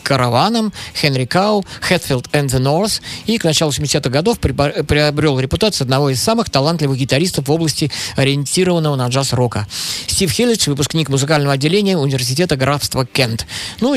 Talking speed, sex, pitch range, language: 145 wpm, male, 130-170 Hz, Russian